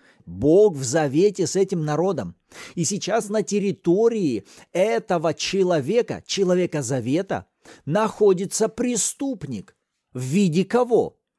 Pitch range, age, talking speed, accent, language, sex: 165-230 Hz, 40-59, 100 wpm, native, Russian, male